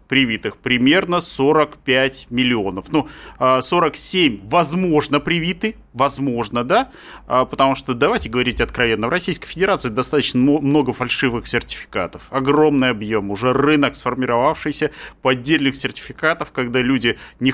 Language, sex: Russian, male